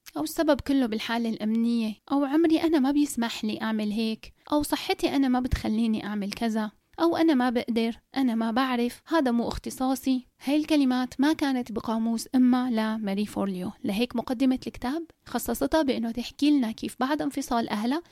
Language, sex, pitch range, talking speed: Arabic, female, 225-275 Hz, 165 wpm